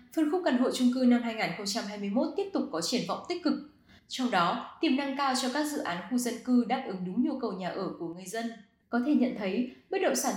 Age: 10-29